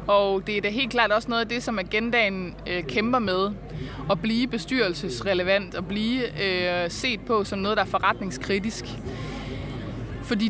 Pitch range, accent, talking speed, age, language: 195-240 Hz, native, 155 wpm, 20-39, Danish